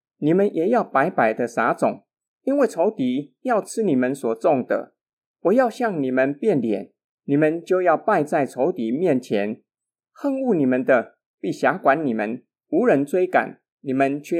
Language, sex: Chinese, male